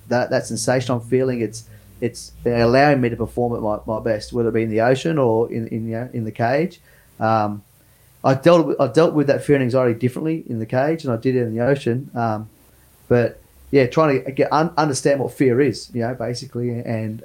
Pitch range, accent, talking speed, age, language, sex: 115-135 Hz, Australian, 225 wpm, 30-49, English, male